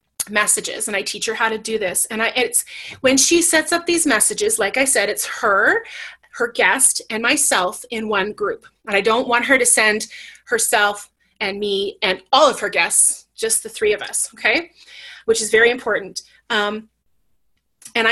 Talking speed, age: 190 wpm, 30-49